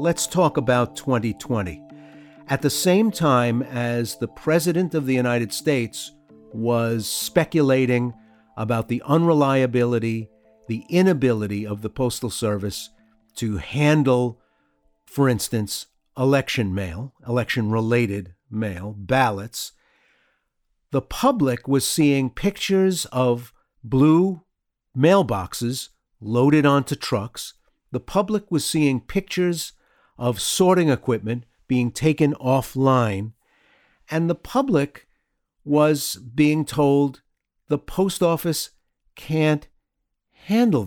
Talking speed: 100 wpm